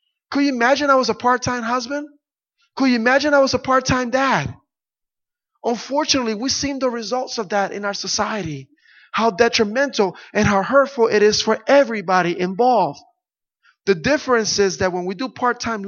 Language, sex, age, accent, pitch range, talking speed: English, male, 20-39, American, 180-255 Hz, 165 wpm